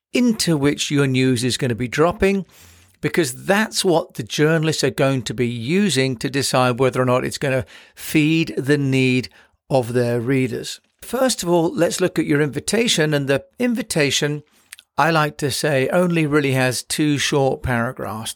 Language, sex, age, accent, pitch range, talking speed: English, male, 50-69, British, 130-175 Hz, 175 wpm